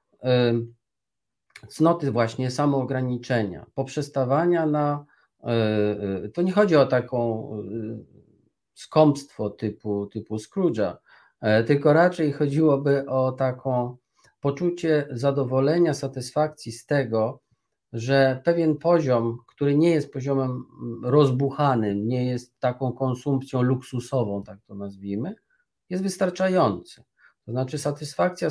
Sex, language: male, Polish